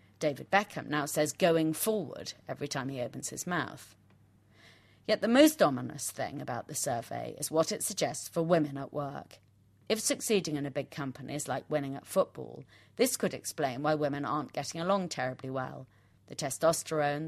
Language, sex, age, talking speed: English, female, 30-49, 175 wpm